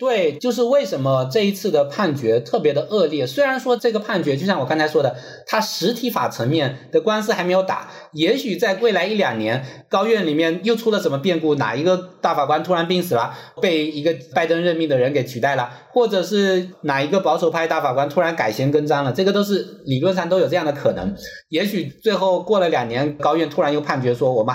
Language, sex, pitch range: Chinese, male, 150-215 Hz